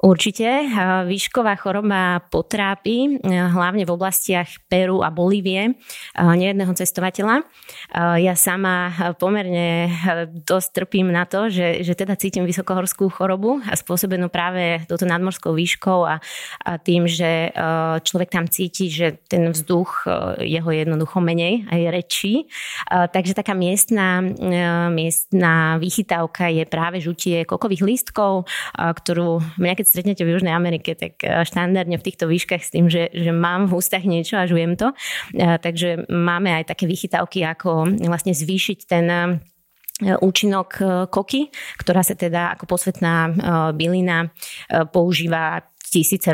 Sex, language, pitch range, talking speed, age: female, Slovak, 170-195 Hz, 125 wpm, 20-39